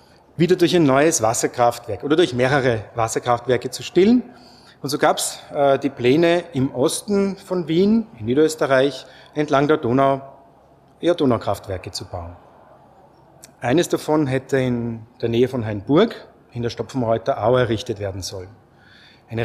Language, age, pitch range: German, 30-49, 120-150 Hz